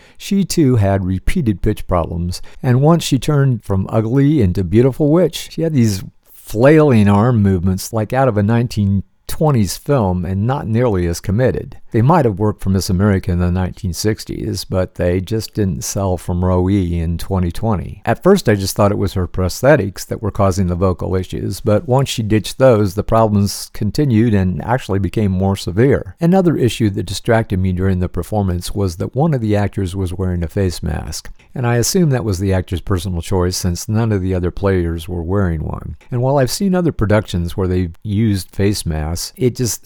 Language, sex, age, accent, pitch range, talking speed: English, male, 50-69, American, 90-115 Hz, 195 wpm